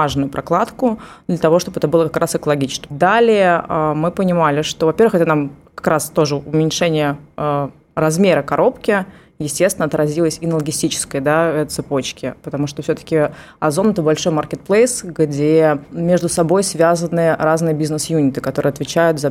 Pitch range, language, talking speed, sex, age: 150-180 Hz, Russian, 145 wpm, female, 20-39